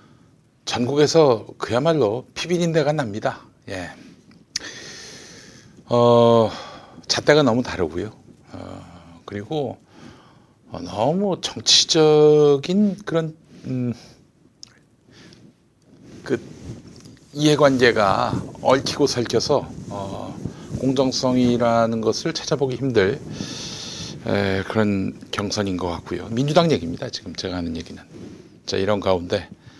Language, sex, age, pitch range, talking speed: English, male, 50-69, 95-135 Hz, 80 wpm